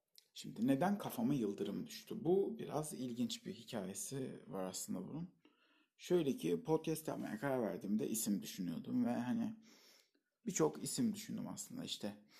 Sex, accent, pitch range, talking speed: male, native, 135-210 Hz, 135 wpm